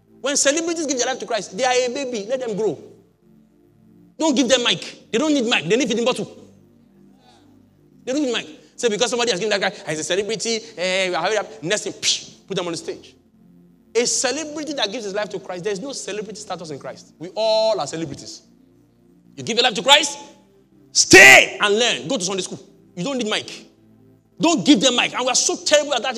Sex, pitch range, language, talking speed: male, 210-295 Hz, English, 230 wpm